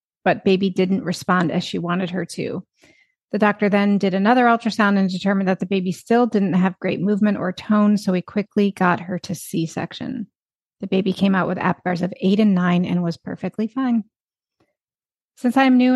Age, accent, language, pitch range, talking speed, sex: 30-49, American, English, 180-215 Hz, 190 wpm, female